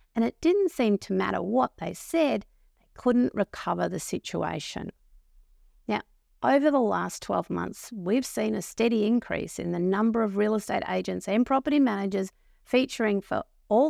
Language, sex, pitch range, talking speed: English, female, 180-245 Hz, 165 wpm